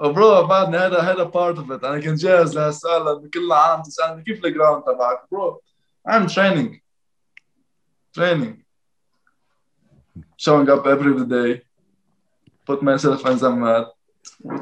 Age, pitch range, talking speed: 20-39, 130-170 Hz, 115 wpm